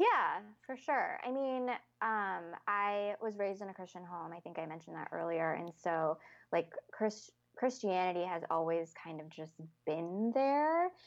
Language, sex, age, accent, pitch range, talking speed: English, female, 20-39, American, 165-205 Hz, 165 wpm